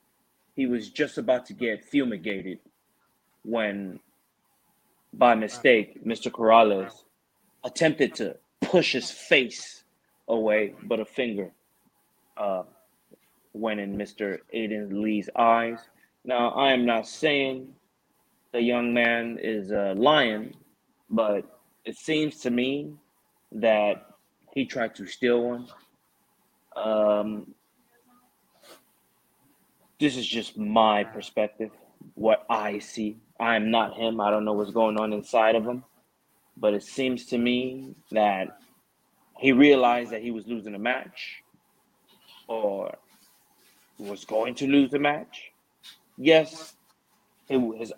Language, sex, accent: English, male, American